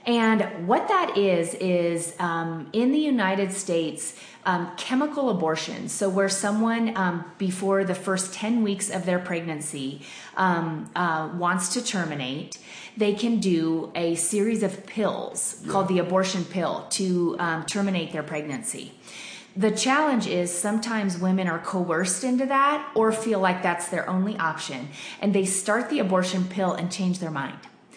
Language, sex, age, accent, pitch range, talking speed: English, female, 30-49, American, 170-205 Hz, 155 wpm